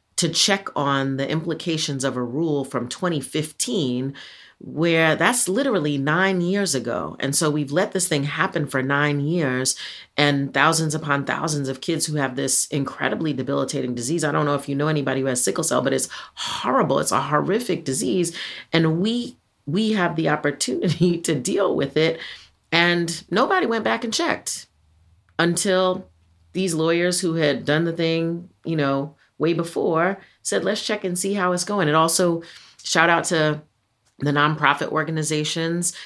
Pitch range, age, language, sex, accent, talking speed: 135-170 Hz, 30-49, English, female, American, 165 wpm